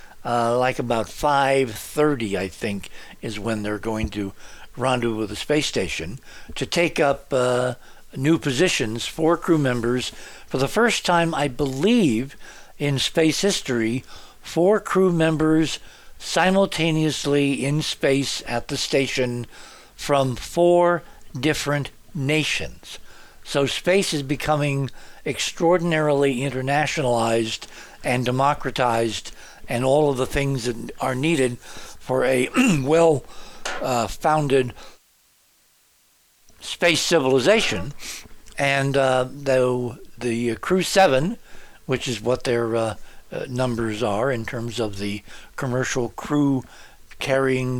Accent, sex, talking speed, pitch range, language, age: American, male, 115 wpm, 120-150 Hz, English, 60-79